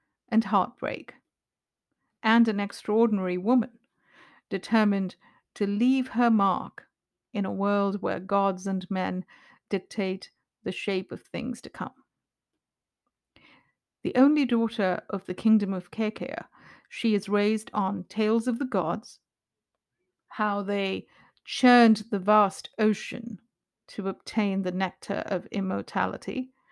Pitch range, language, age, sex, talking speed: 195-230 Hz, English, 50-69, female, 120 wpm